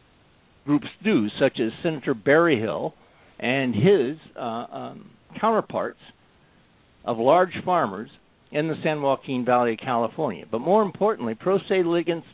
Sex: male